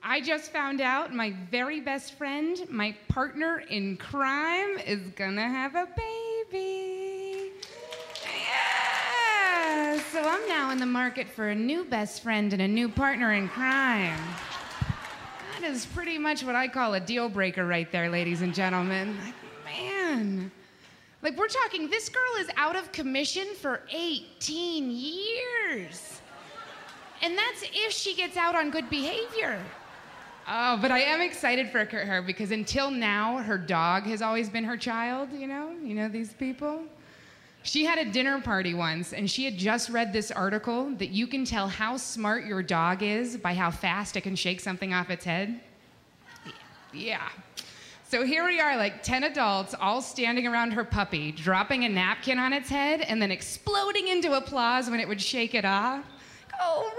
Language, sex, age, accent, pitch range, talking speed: English, female, 30-49, American, 210-320 Hz, 165 wpm